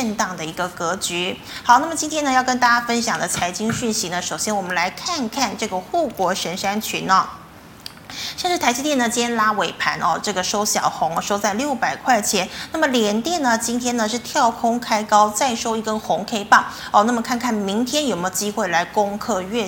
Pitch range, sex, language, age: 200-250 Hz, female, Chinese, 20-39